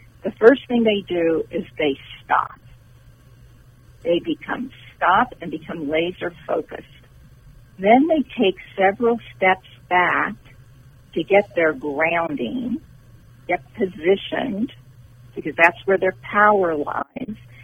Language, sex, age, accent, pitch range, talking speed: English, female, 50-69, American, 125-190 Hz, 110 wpm